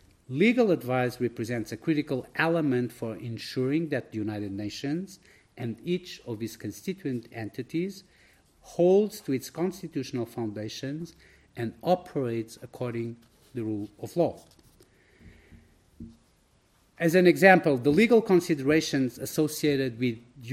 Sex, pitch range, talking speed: male, 115-150 Hz, 115 wpm